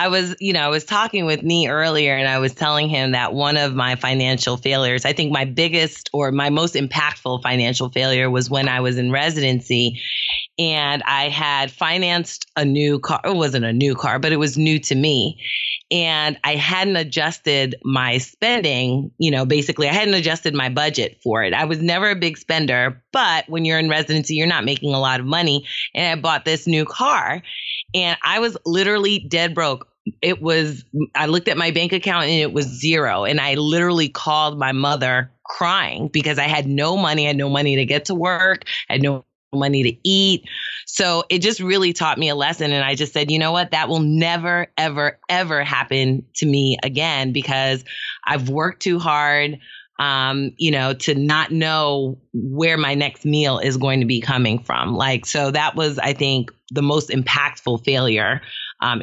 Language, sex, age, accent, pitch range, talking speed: English, female, 30-49, American, 135-165 Hz, 200 wpm